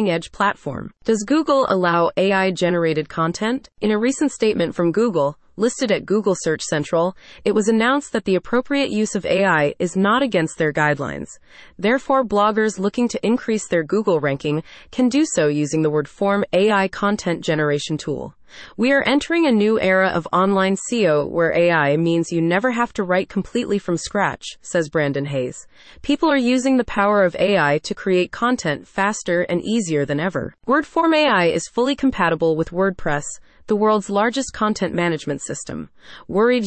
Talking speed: 170 wpm